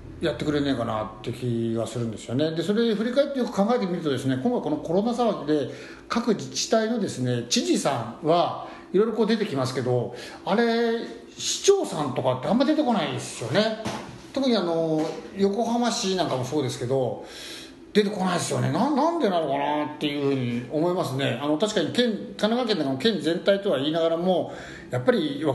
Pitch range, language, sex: 125-200 Hz, Japanese, male